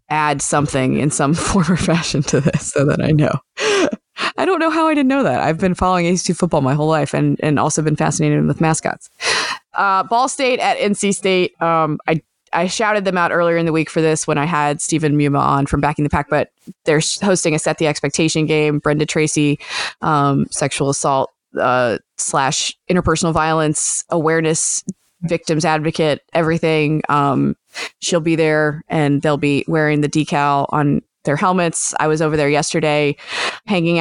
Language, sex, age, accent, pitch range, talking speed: English, female, 20-39, American, 150-170 Hz, 185 wpm